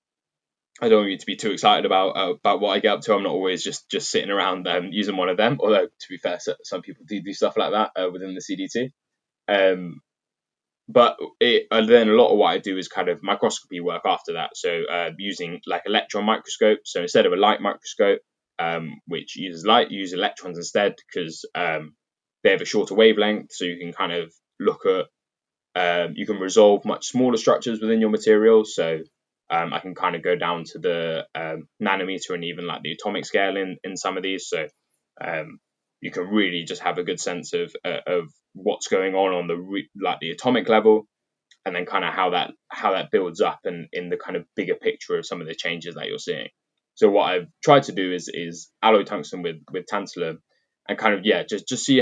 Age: 10-29